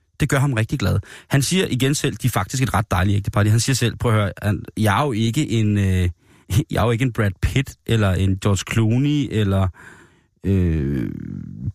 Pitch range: 100-130 Hz